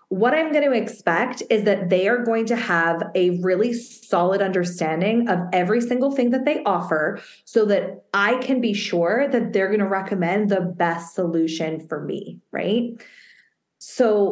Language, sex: English, female